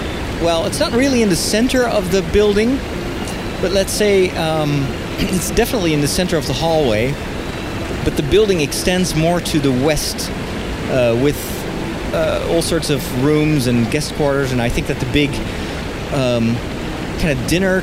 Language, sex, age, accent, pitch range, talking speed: English, male, 40-59, American, 120-165 Hz, 170 wpm